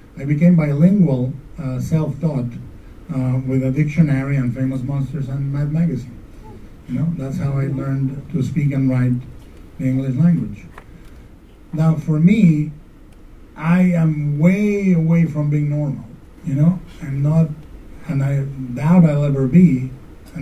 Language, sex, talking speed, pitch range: English, male, 145 wpm, 125-155 Hz